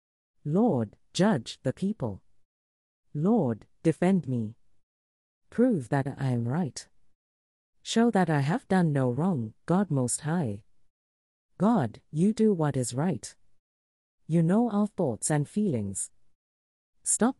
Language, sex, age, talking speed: English, female, 40-59, 120 wpm